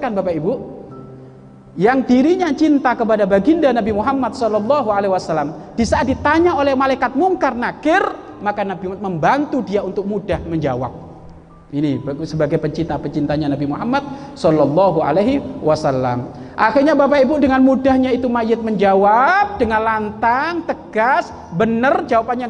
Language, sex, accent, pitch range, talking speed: Indonesian, male, native, 170-235 Hz, 130 wpm